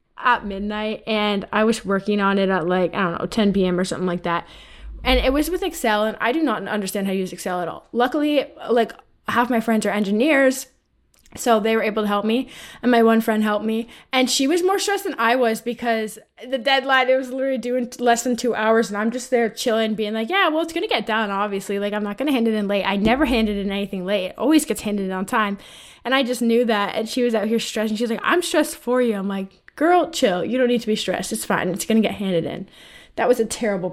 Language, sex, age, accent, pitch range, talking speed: English, female, 20-39, American, 205-255 Hz, 260 wpm